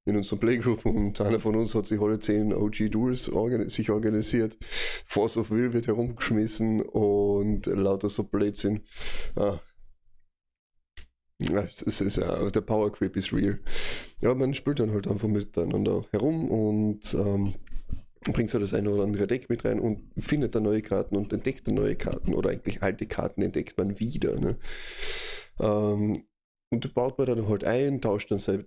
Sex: male